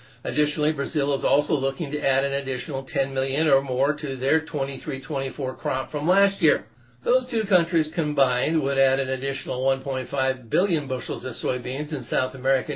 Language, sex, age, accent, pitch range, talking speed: English, male, 60-79, American, 130-160 Hz, 170 wpm